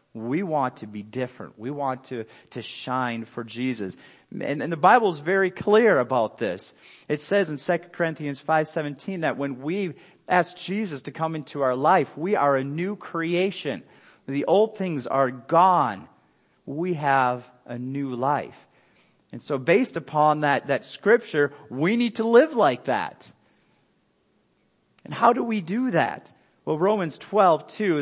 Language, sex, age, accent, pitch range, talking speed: English, male, 40-59, American, 130-180 Hz, 160 wpm